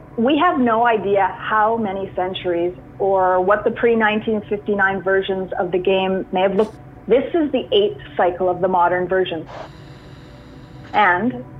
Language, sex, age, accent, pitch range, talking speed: English, female, 30-49, American, 180-225 Hz, 145 wpm